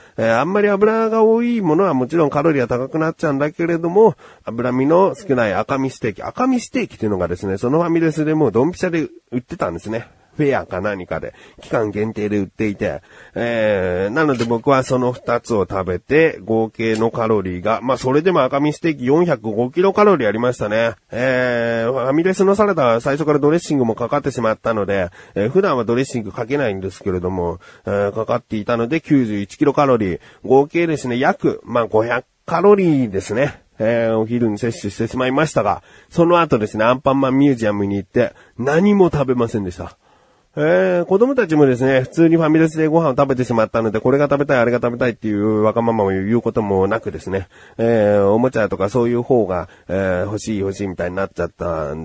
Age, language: 40-59, Japanese